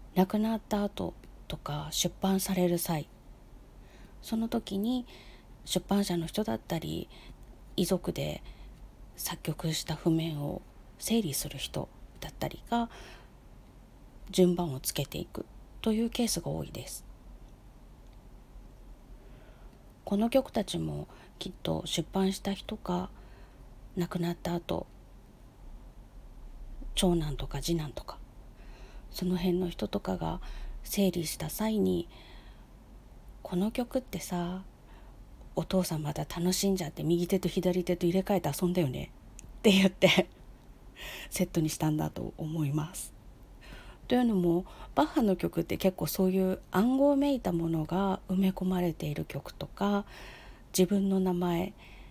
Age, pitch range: 40-59, 155-195 Hz